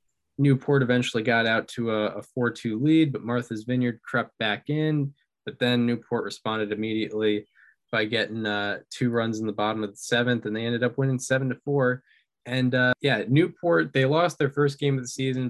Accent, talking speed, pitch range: American, 190 wpm, 115-135 Hz